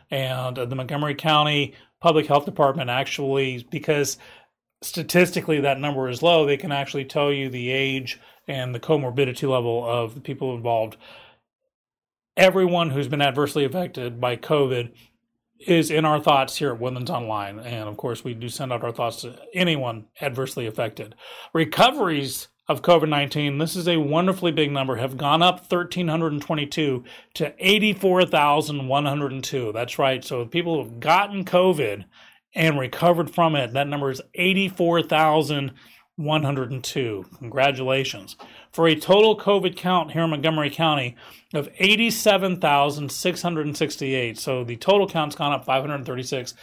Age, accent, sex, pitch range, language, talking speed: 40-59, American, male, 130-175 Hz, English, 150 wpm